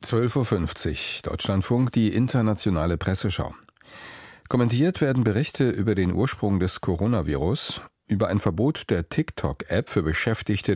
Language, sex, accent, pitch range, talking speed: German, male, German, 90-120 Hz, 115 wpm